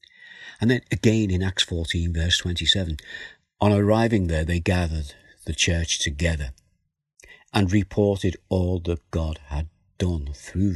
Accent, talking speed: British, 135 wpm